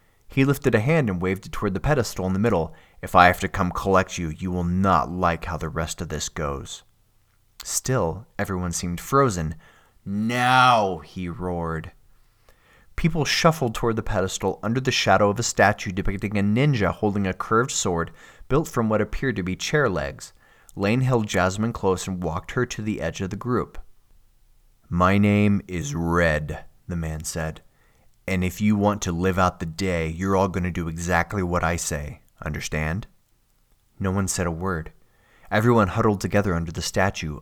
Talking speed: 180 wpm